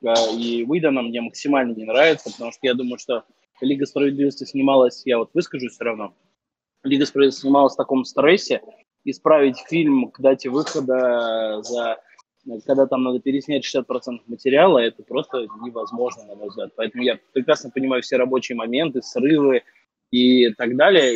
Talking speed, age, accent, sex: 140 wpm, 20-39, native, male